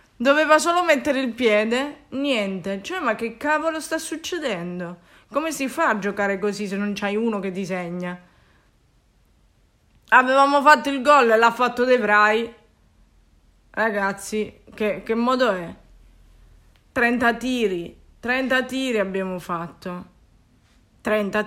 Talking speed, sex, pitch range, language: 125 wpm, female, 205-280 Hz, Italian